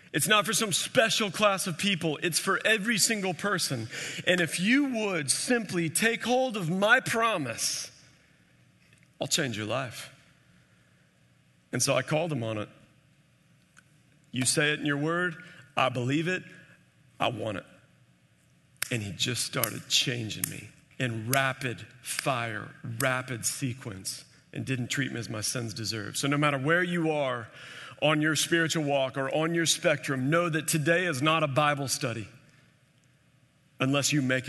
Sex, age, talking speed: male, 40-59, 155 wpm